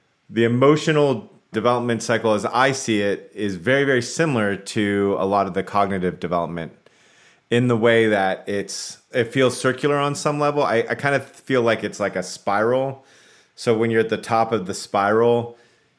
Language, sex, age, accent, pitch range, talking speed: English, male, 30-49, American, 95-115 Hz, 185 wpm